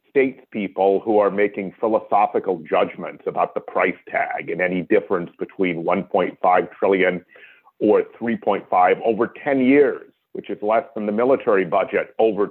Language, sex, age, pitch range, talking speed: English, male, 50-69, 110-135 Hz, 145 wpm